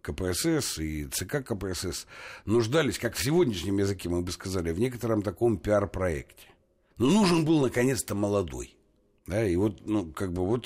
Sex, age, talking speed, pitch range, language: male, 60-79, 140 wpm, 90-125 Hz, Russian